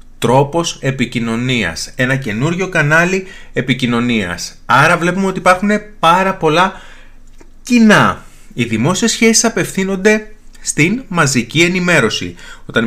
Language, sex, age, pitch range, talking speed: Greek, male, 30-49, 120-180 Hz, 100 wpm